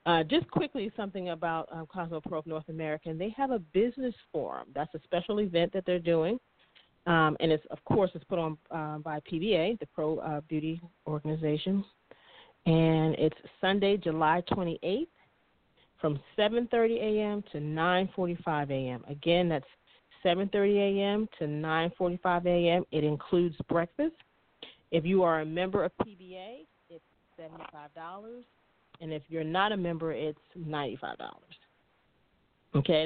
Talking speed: 140 wpm